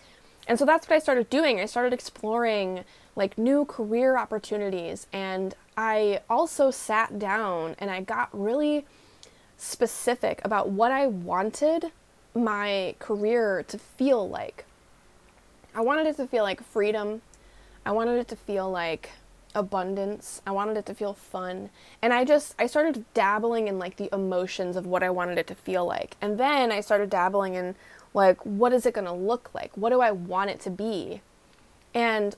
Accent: American